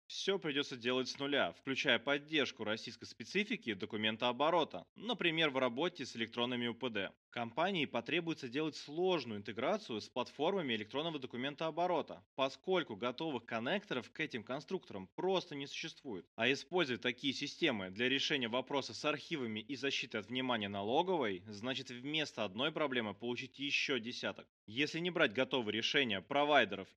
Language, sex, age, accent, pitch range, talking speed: Russian, male, 20-39, native, 115-155 Hz, 140 wpm